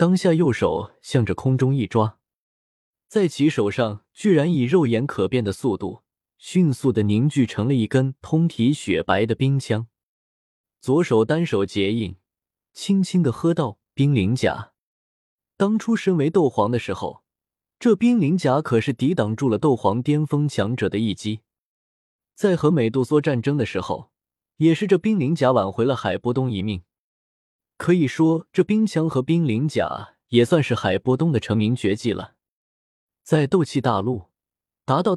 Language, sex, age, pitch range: Chinese, male, 20-39, 110-160 Hz